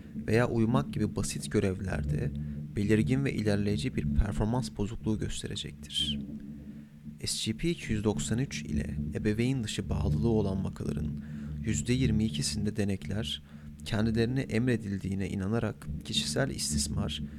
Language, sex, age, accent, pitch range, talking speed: Turkish, male, 30-49, native, 75-110 Hz, 90 wpm